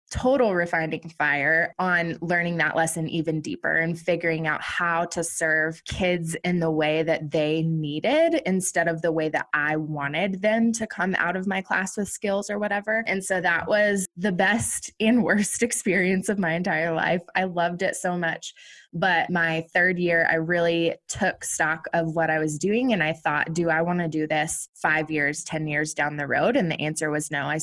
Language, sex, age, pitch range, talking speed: English, female, 20-39, 160-220 Hz, 200 wpm